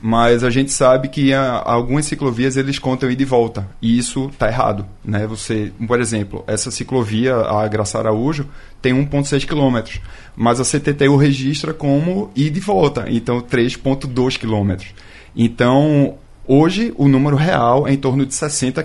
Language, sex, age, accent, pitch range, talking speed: Portuguese, male, 20-39, Brazilian, 115-145 Hz, 160 wpm